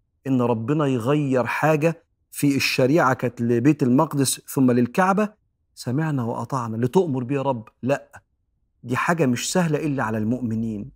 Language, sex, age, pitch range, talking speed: Arabic, male, 40-59, 125-160 Hz, 130 wpm